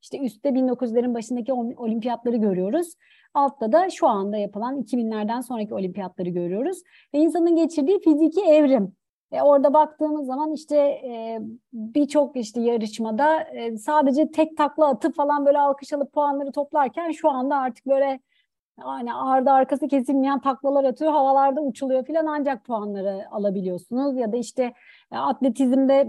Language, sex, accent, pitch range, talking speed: Turkish, female, native, 235-295 Hz, 135 wpm